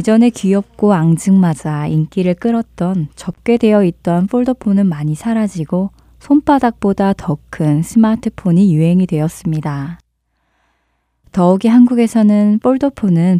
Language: Korean